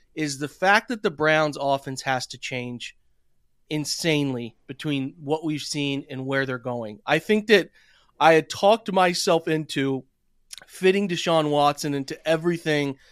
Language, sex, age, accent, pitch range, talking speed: English, male, 30-49, American, 140-165 Hz, 145 wpm